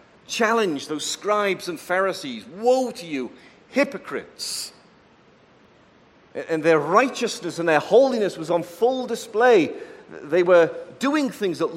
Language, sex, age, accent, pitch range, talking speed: English, male, 40-59, British, 150-215 Hz, 120 wpm